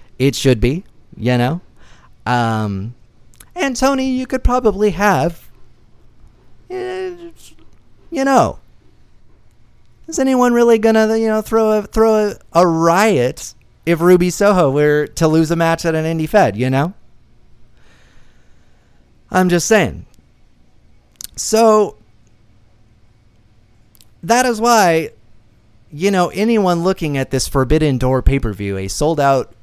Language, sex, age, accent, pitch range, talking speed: English, male, 30-49, American, 110-175 Hz, 120 wpm